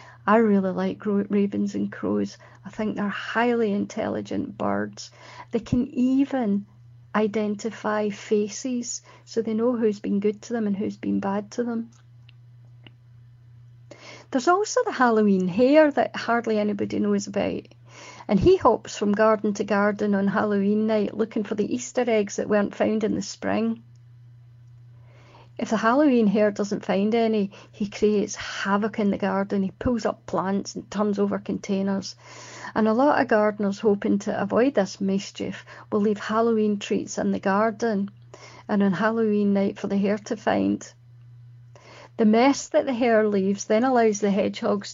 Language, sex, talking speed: English, female, 160 wpm